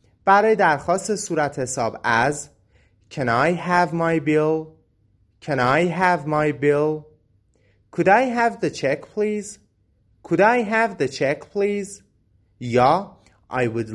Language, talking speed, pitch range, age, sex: Persian, 135 wpm, 115-185 Hz, 30-49, male